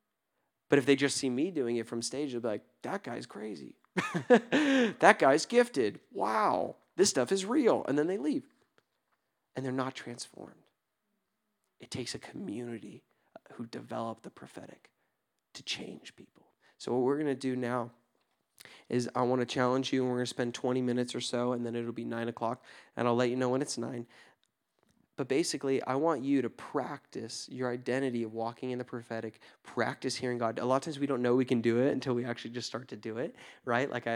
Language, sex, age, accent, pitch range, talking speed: English, male, 30-49, American, 120-140 Hz, 205 wpm